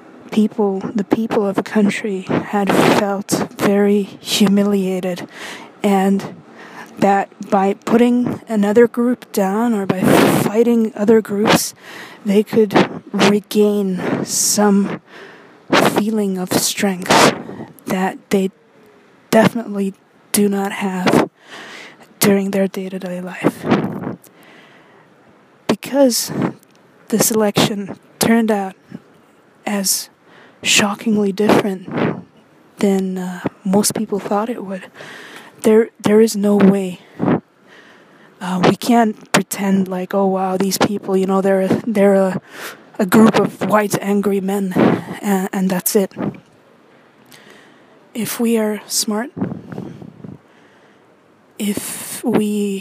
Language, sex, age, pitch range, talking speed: English, female, 20-39, 195-220 Hz, 100 wpm